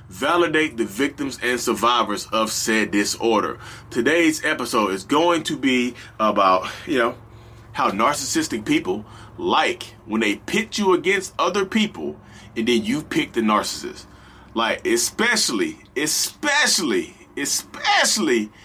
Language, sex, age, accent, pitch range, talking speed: English, male, 30-49, American, 120-180 Hz, 120 wpm